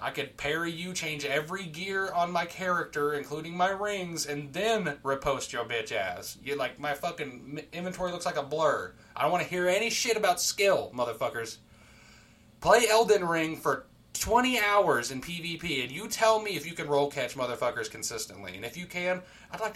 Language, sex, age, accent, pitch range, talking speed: English, male, 30-49, American, 125-170 Hz, 190 wpm